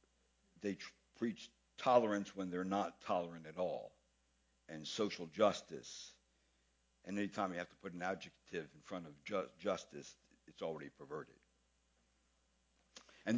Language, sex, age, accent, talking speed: English, male, 60-79, American, 130 wpm